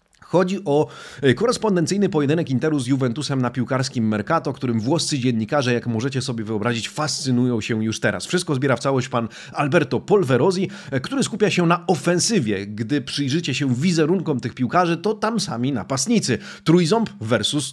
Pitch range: 125-170 Hz